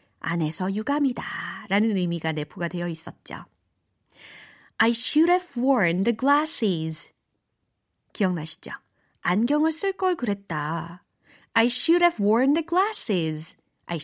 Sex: female